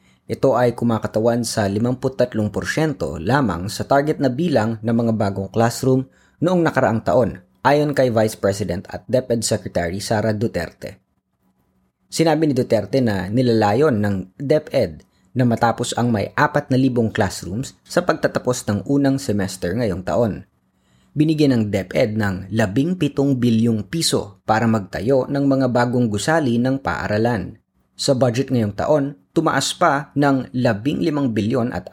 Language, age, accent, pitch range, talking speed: Filipino, 20-39, native, 105-135 Hz, 135 wpm